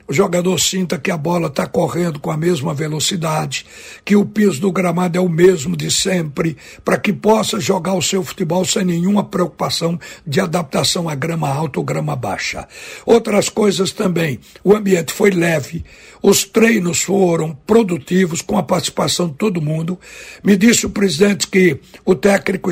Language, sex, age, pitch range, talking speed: Portuguese, male, 60-79, 170-205 Hz, 170 wpm